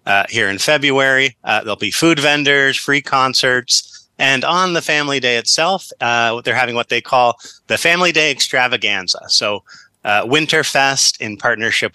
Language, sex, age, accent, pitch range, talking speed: English, male, 30-49, American, 115-140 Hz, 160 wpm